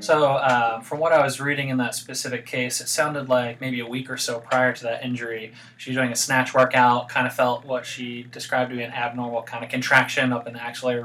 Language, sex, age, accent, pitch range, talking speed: English, male, 20-39, American, 120-130 Hz, 245 wpm